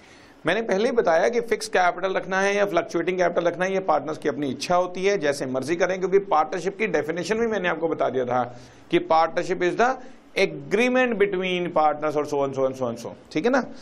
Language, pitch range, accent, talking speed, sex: Hindi, 150-205 Hz, native, 215 wpm, male